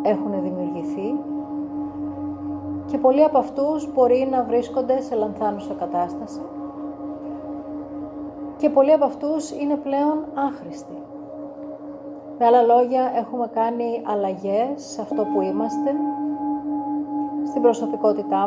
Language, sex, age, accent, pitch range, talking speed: Greek, female, 30-49, native, 260-295 Hz, 100 wpm